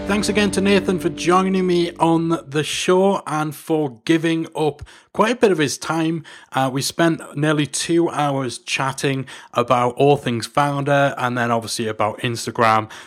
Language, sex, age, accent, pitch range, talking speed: English, male, 30-49, British, 125-160 Hz, 165 wpm